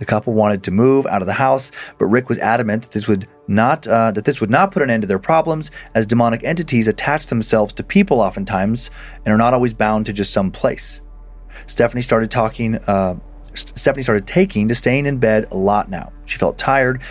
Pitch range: 110-140 Hz